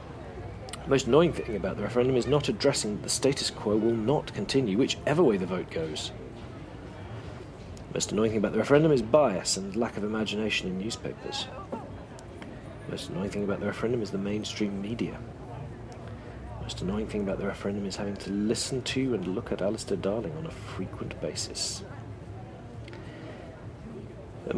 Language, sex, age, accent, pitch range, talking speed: English, male, 40-59, British, 100-125 Hz, 170 wpm